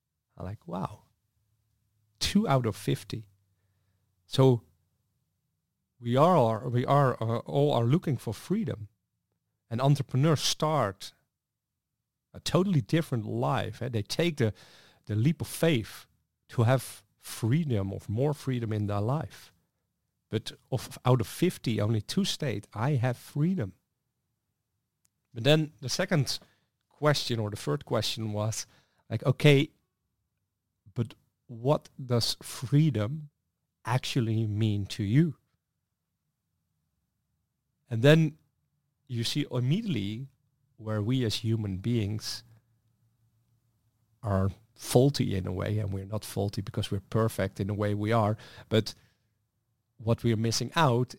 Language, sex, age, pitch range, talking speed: English, male, 40-59, 105-140 Hz, 125 wpm